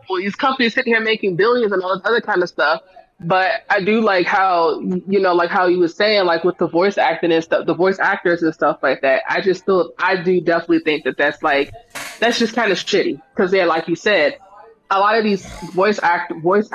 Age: 20-39